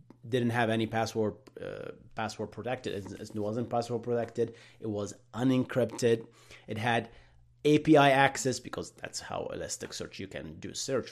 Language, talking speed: English, 145 wpm